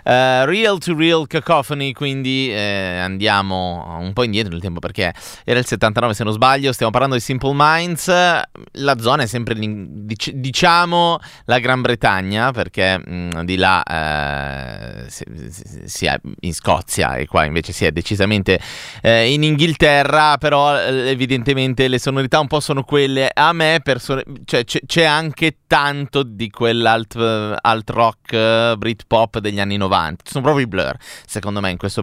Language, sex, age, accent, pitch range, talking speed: Italian, male, 30-49, native, 105-155 Hz, 165 wpm